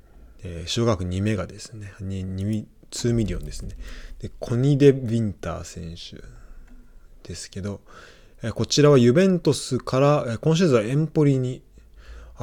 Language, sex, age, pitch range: Japanese, male, 20-39, 90-120 Hz